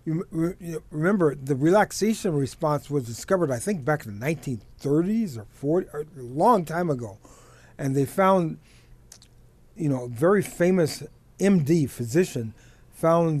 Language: English